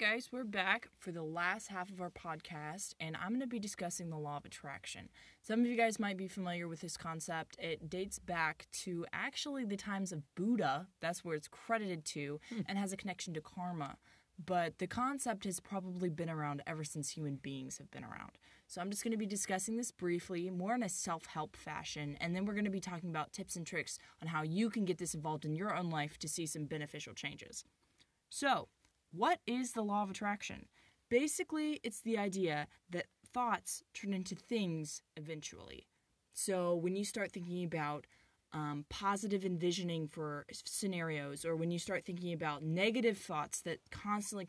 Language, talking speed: English, 195 wpm